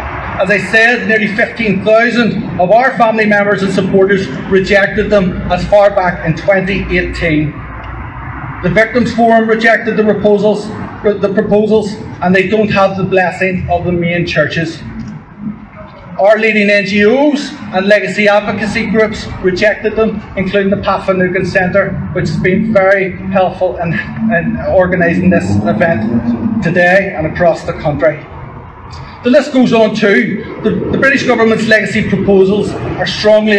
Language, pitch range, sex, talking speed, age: English, 185-220 Hz, male, 135 wpm, 30-49